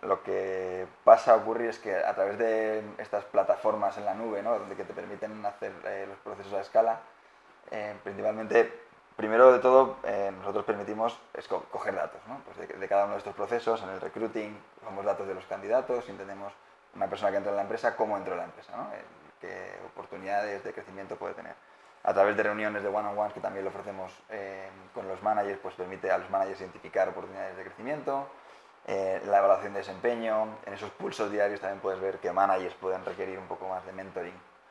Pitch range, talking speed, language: 95-110 Hz, 210 wpm, Spanish